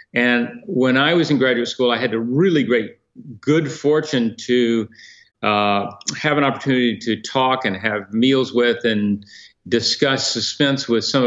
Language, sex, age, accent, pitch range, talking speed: English, male, 50-69, American, 115-140 Hz, 160 wpm